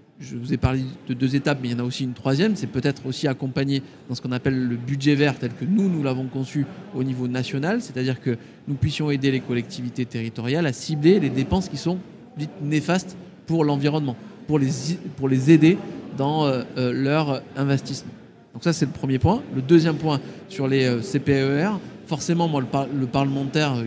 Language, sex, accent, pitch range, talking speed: French, male, French, 130-155 Hz, 190 wpm